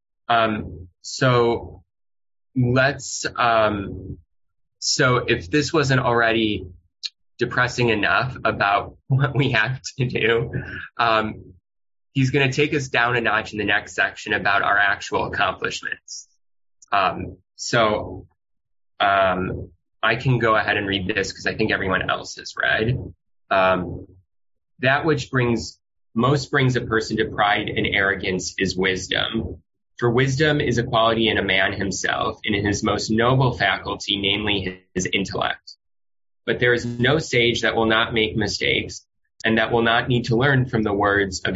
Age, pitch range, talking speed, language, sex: 20-39, 95-120 Hz, 150 wpm, English, male